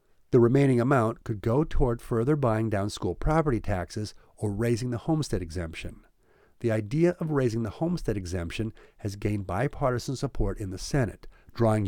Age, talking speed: 50-69, 160 wpm